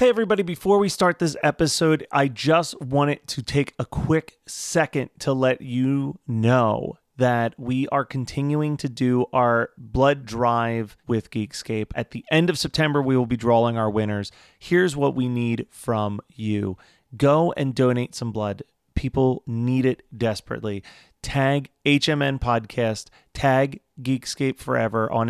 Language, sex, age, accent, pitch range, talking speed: English, male, 30-49, American, 115-140 Hz, 150 wpm